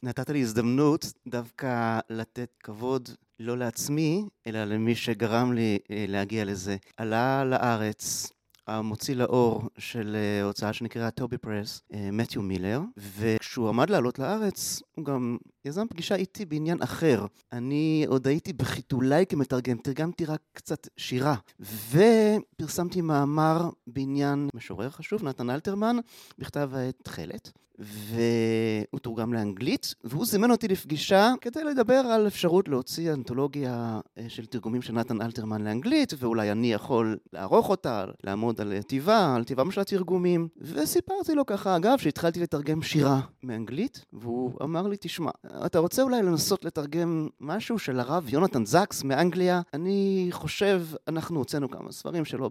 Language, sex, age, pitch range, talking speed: Hebrew, male, 30-49, 115-170 Hz, 135 wpm